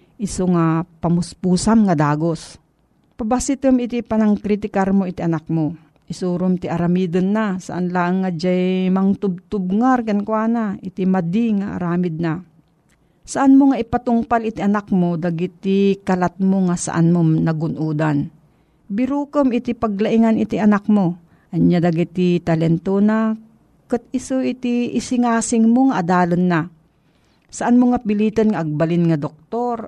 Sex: female